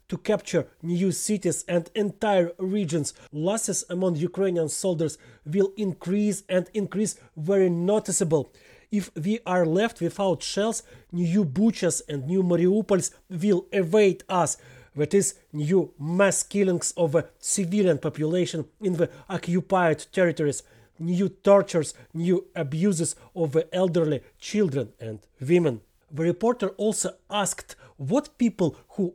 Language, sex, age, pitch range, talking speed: English, male, 30-49, 165-205 Hz, 125 wpm